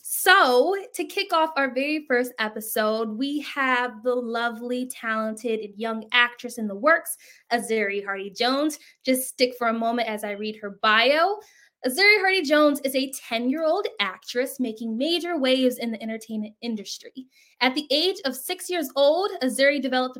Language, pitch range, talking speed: English, 235-310 Hz, 160 wpm